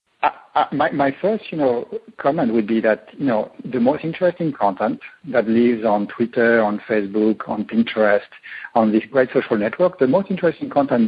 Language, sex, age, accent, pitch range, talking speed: English, male, 60-79, French, 115-155 Hz, 180 wpm